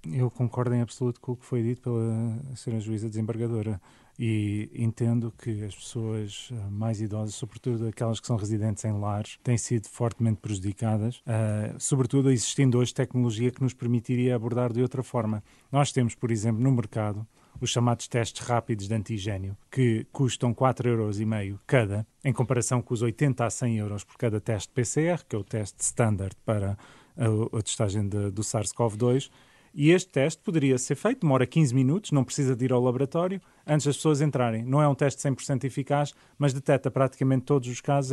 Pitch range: 115-150 Hz